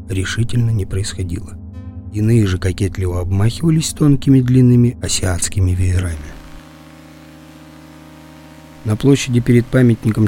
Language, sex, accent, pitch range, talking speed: Russian, male, native, 90-125 Hz, 90 wpm